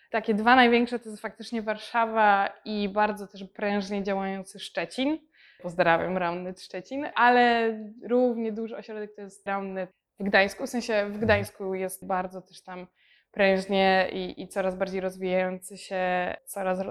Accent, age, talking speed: native, 20-39, 145 wpm